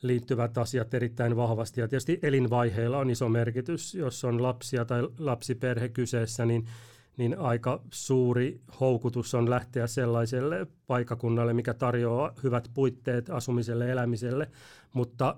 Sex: male